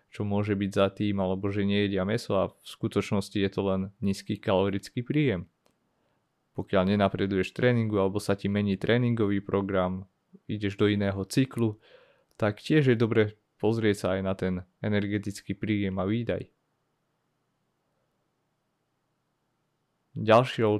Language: Slovak